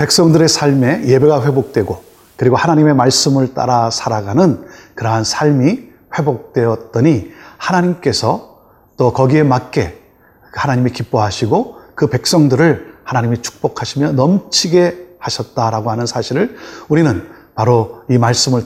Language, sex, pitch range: Korean, male, 115-160 Hz